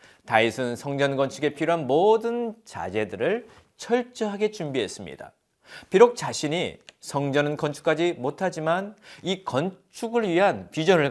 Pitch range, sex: 130-190 Hz, male